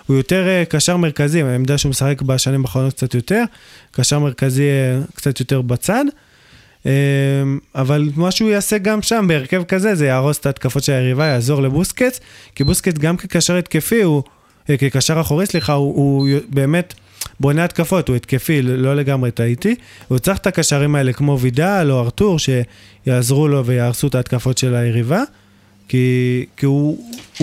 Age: 20-39